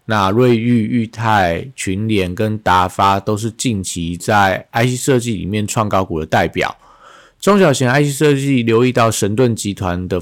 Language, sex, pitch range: Chinese, male, 100-120 Hz